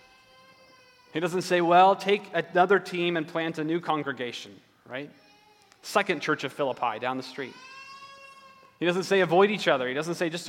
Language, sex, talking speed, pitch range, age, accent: English, male, 170 wpm, 150-200 Hz, 30-49, American